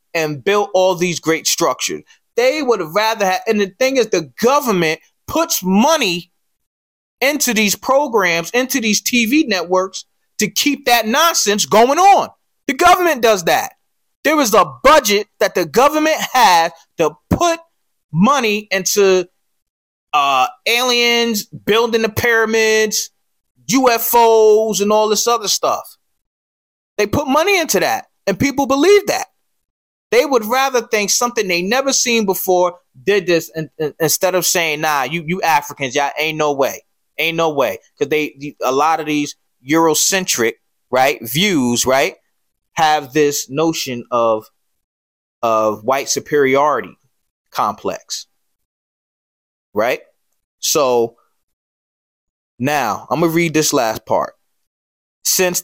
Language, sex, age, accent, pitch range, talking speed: English, male, 30-49, American, 155-240 Hz, 135 wpm